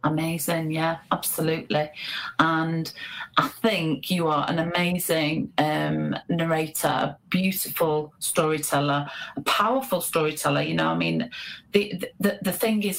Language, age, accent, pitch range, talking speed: English, 40-59, British, 150-185 Hz, 125 wpm